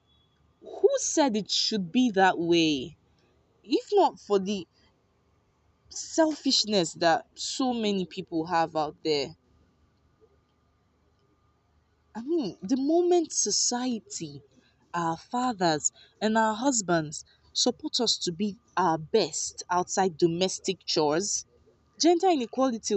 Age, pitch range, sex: 20-39, 160-215 Hz, female